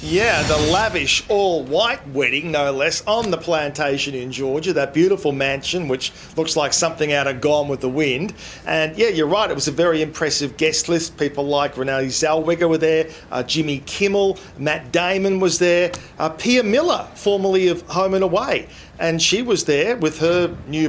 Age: 40-59